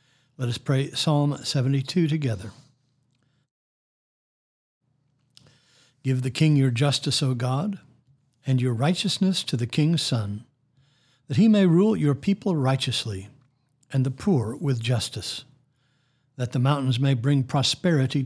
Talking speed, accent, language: 125 wpm, American, English